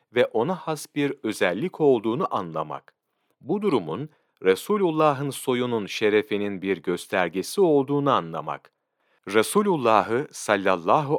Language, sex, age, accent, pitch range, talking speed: Turkish, male, 40-59, native, 105-145 Hz, 95 wpm